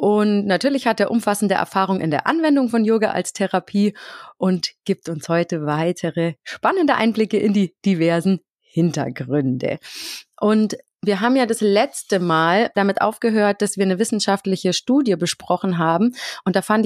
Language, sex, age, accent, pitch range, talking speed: German, female, 30-49, German, 180-225 Hz, 155 wpm